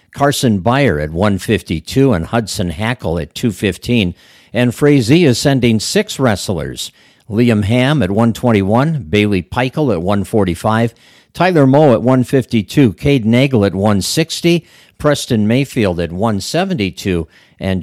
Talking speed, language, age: 120 wpm, English, 50-69